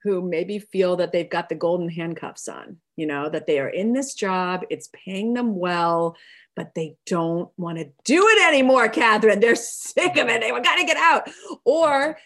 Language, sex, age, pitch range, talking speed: English, female, 30-49, 185-255 Hz, 205 wpm